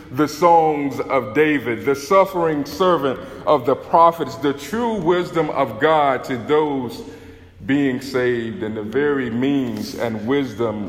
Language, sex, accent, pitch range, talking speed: English, male, American, 120-160 Hz, 140 wpm